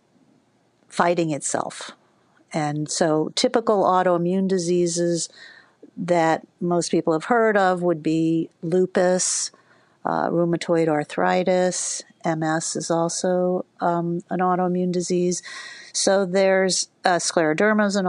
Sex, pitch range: female, 160-185 Hz